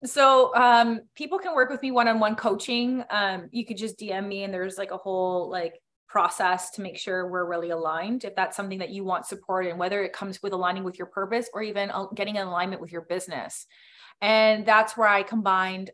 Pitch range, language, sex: 185-220 Hz, English, female